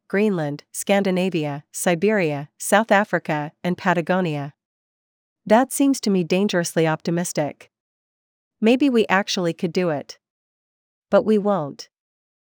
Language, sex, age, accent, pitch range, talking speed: English, female, 40-59, American, 160-200 Hz, 105 wpm